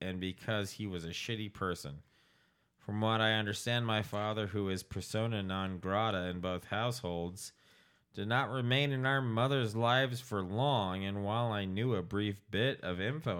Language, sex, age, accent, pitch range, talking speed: English, male, 30-49, American, 95-115 Hz, 175 wpm